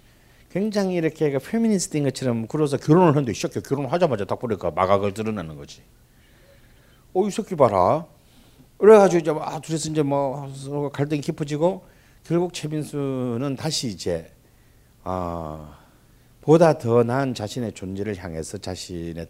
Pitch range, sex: 105-155 Hz, male